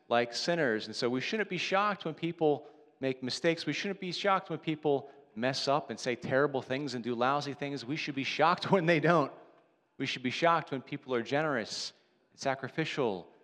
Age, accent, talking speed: 40-59, American, 200 wpm